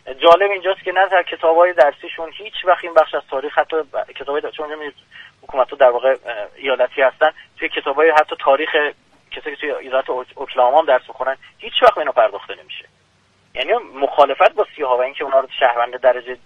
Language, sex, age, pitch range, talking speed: Persian, male, 30-49, 140-190 Hz, 180 wpm